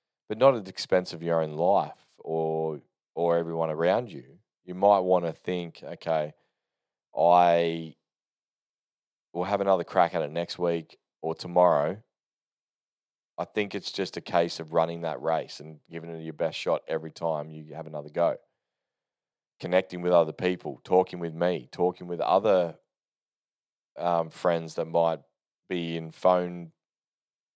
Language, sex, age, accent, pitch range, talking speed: English, male, 20-39, Australian, 80-90 Hz, 150 wpm